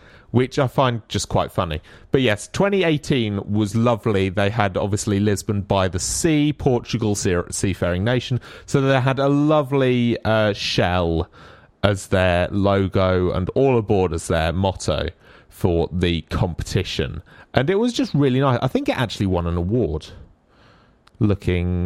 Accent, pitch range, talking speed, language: British, 90-125 Hz, 150 wpm, English